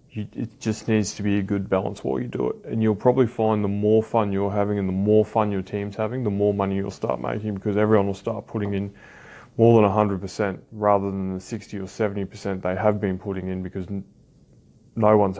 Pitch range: 105-120 Hz